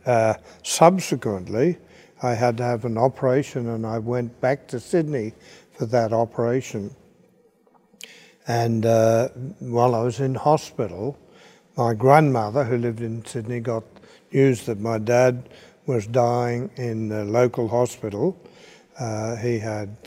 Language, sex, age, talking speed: English, male, 60-79, 130 wpm